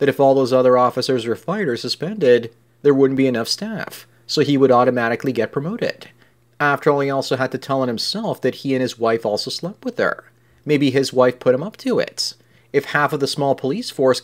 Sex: male